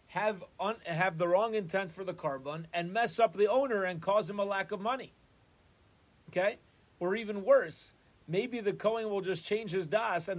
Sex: male